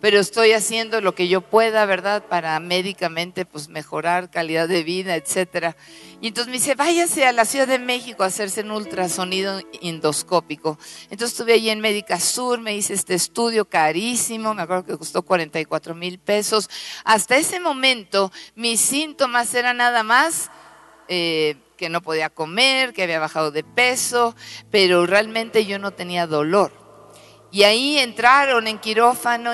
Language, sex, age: Spanish, female, 50-69